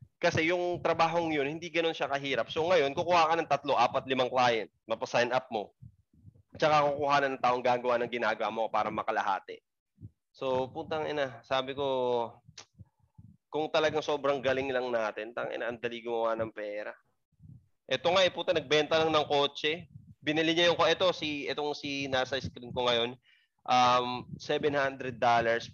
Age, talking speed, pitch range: 20-39, 160 wpm, 115-145 Hz